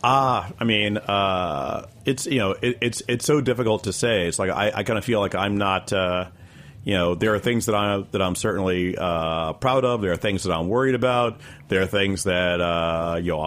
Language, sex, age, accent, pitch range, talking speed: English, male, 40-59, American, 95-110 Hz, 235 wpm